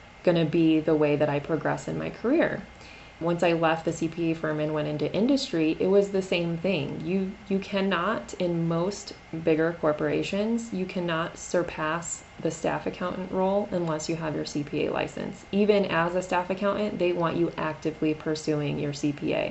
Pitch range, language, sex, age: 150-175 Hz, English, female, 20-39